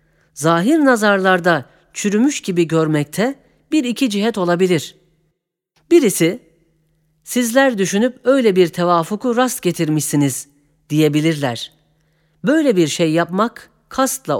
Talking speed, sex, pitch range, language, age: 95 wpm, female, 155-205 Hz, Turkish, 40-59